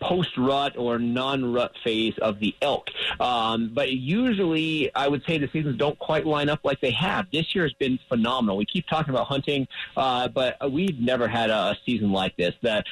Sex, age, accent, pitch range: male, 30-49, American, 115-150 Hz